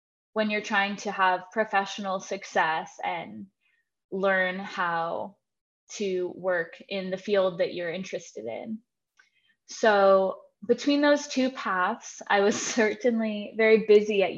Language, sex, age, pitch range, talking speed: English, female, 20-39, 185-220 Hz, 125 wpm